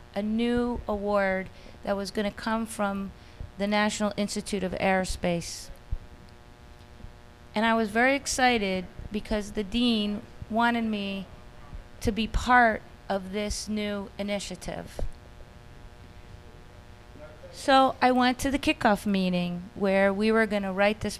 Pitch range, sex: 190-225 Hz, female